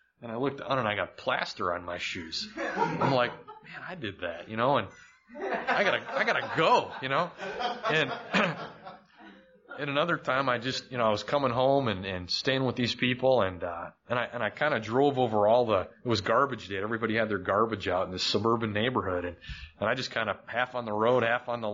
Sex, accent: male, American